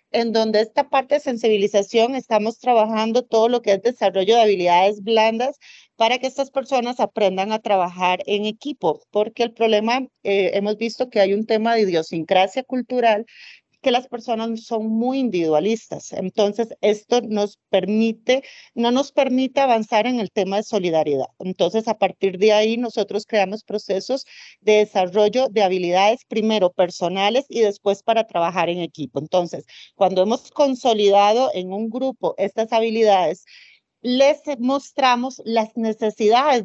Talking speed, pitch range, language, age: 145 wpm, 200-245 Hz, Spanish, 40-59